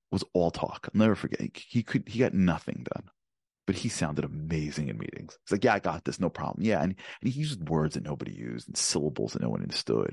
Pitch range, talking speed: 80-105 Hz, 245 wpm